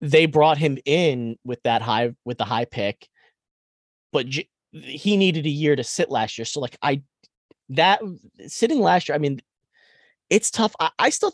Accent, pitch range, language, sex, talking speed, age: American, 110-155 Hz, English, male, 180 wpm, 30-49